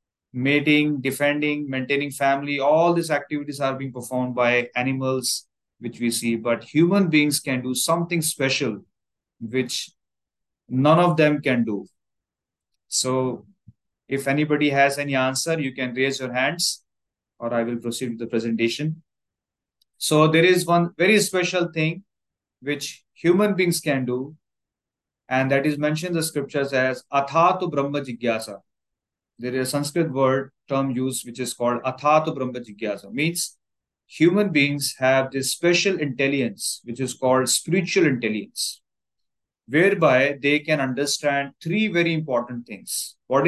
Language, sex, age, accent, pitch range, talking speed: English, male, 30-49, Indian, 125-155 Hz, 140 wpm